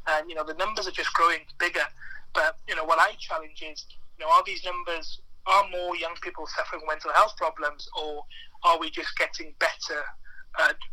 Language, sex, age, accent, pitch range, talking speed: English, male, 30-49, British, 155-195 Hz, 200 wpm